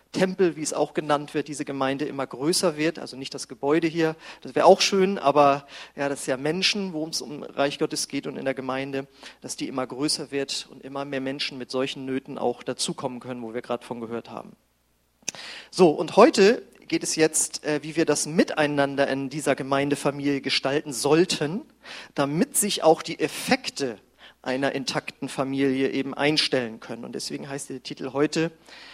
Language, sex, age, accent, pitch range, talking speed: German, male, 40-59, German, 135-160 Hz, 185 wpm